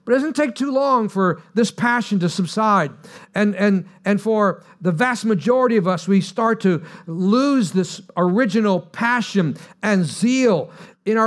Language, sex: English, male